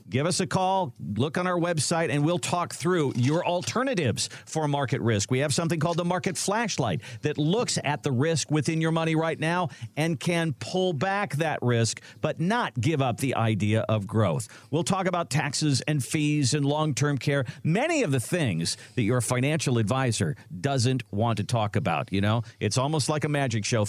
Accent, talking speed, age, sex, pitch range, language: American, 195 wpm, 50-69, male, 120-170 Hz, English